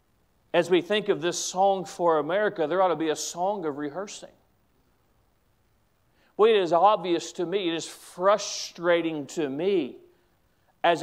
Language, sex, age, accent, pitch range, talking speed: English, male, 40-59, American, 195-295 Hz, 150 wpm